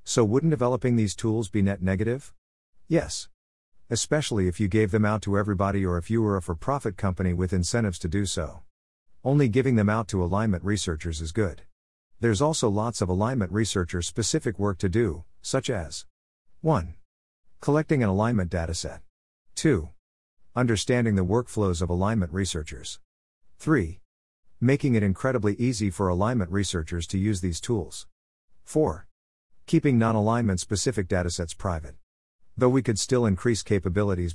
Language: English